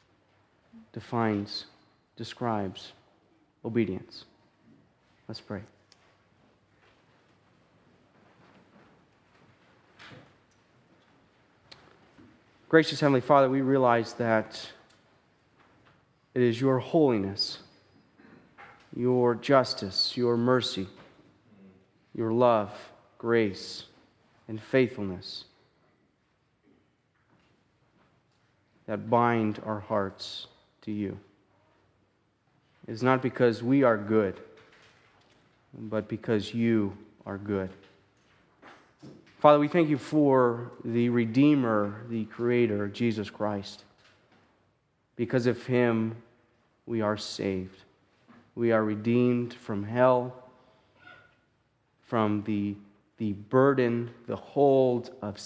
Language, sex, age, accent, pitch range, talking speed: English, male, 30-49, American, 105-125 Hz, 75 wpm